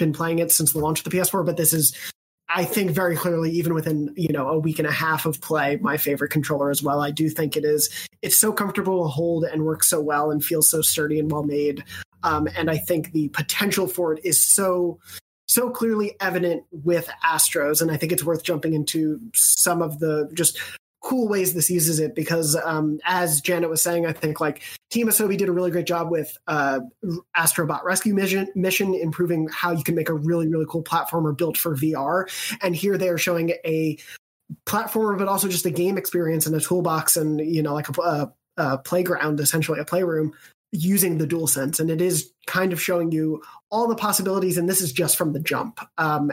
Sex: male